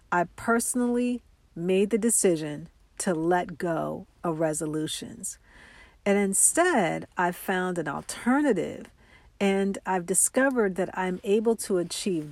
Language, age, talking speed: English, 50-69, 115 wpm